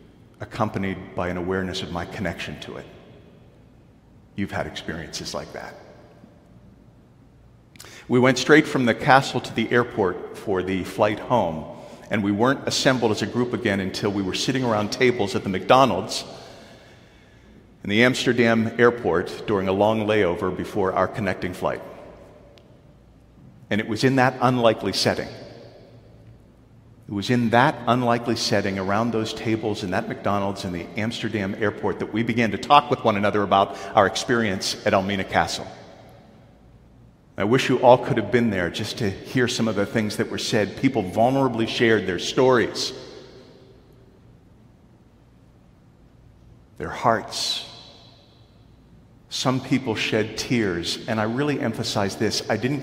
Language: English